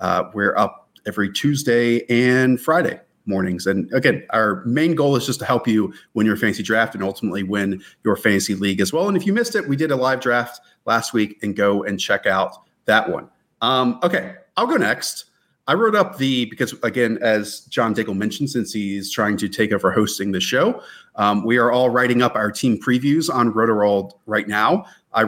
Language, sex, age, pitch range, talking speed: English, male, 30-49, 105-135 Hz, 205 wpm